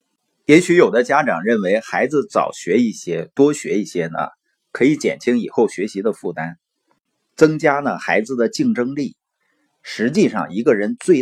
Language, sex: Chinese, male